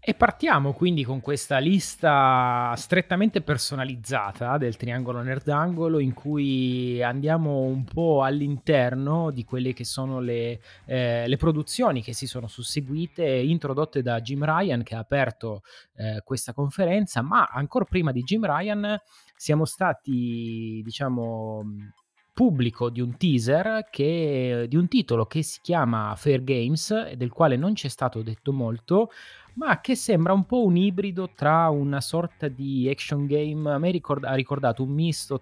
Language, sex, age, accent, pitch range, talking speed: Italian, male, 30-49, native, 120-155 Hz, 150 wpm